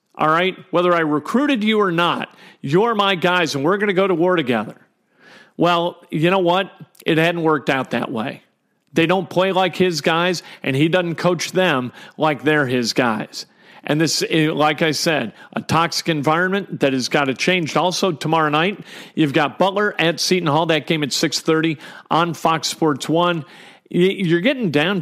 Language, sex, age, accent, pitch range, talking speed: English, male, 40-59, American, 150-180 Hz, 185 wpm